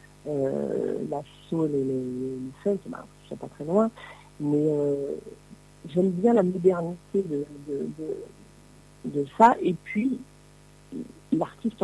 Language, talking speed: French, 135 wpm